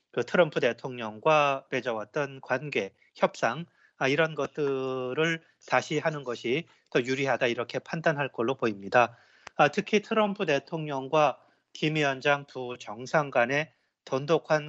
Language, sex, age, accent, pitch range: Korean, male, 30-49, native, 130-170 Hz